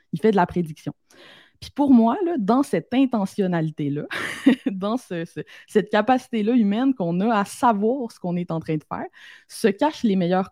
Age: 20-39